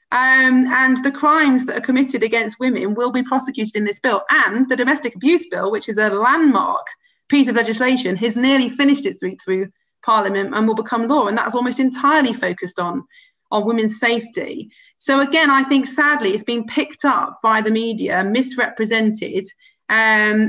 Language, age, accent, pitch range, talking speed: English, 30-49, British, 220-270 Hz, 180 wpm